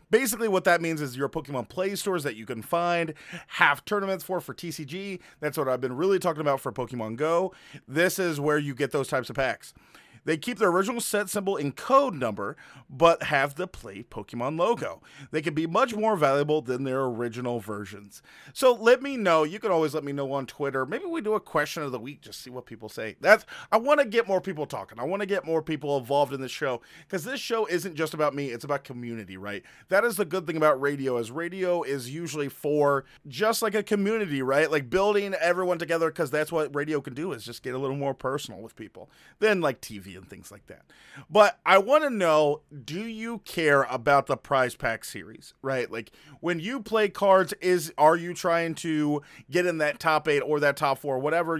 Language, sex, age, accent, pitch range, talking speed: English, male, 30-49, American, 140-190 Hz, 225 wpm